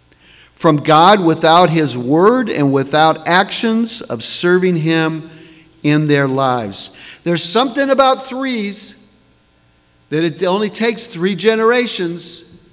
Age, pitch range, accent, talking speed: 50-69, 150-190 Hz, American, 115 wpm